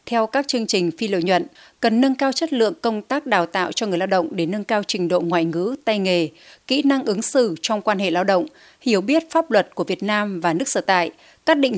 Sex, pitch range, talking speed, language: female, 180-255 Hz, 260 wpm, Vietnamese